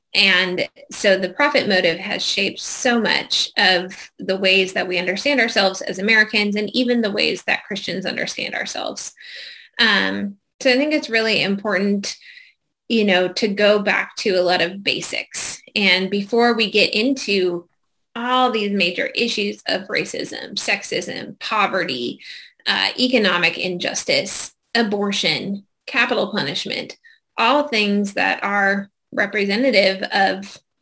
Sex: female